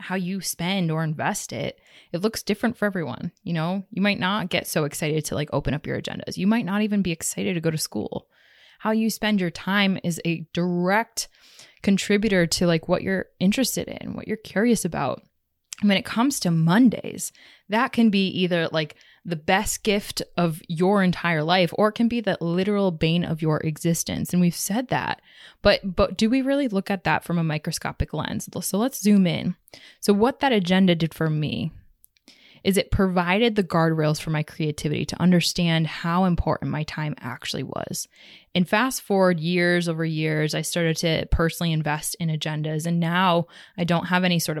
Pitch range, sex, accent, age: 160-205 Hz, female, American, 20-39